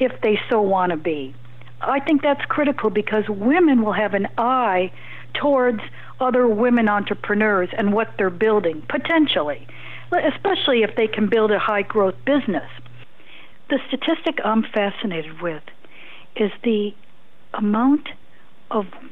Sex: female